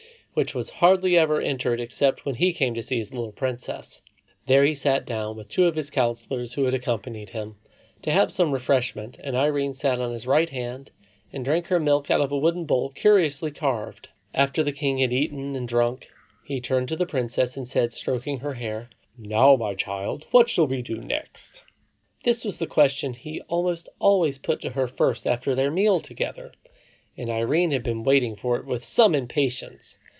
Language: English